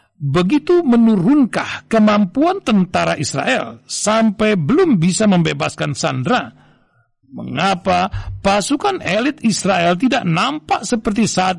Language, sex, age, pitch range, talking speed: Indonesian, male, 60-79, 160-220 Hz, 95 wpm